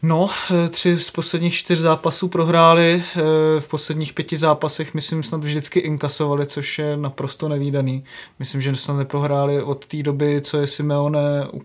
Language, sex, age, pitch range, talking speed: Czech, male, 20-39, 145-160 Hz, 165 wpm